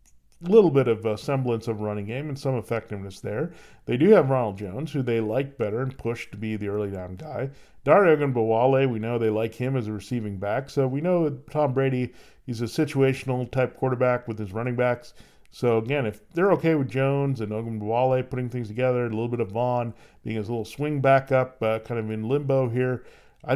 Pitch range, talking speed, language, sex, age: 110-135 Hz, 215 wpm, English, male, 40-59